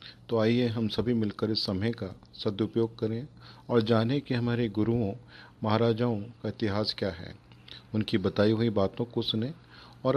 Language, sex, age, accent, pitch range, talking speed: Hindi, male, 40-59, native, 105-120 Hz, 160 wpm